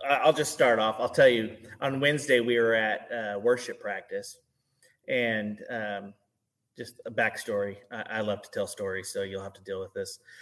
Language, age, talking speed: English, 30-49, 190 wpm